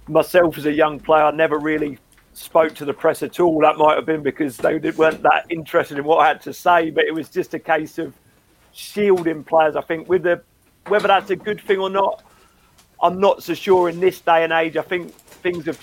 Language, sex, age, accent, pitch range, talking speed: English, male, 40-59, British, 155-175 Hz, 230 wpm